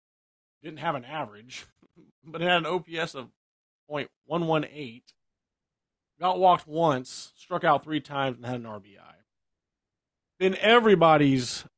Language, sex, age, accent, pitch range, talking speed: English, male, 40-59, American, 115-165 Hz, 115 wpm